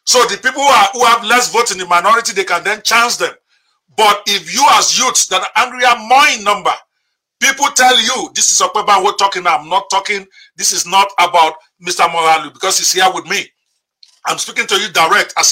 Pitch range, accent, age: 195-250 Hz, Nigerian, 50-69